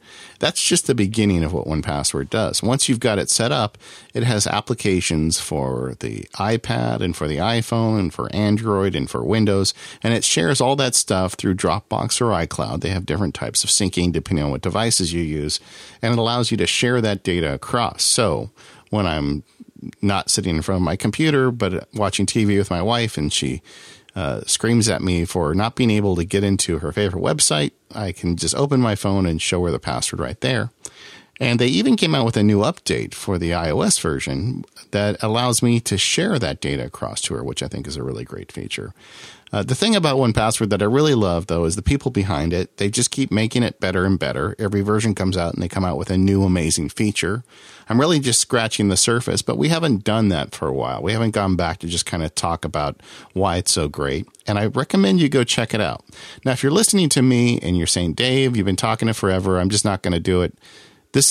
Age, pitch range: 50-69, 85-115 Hz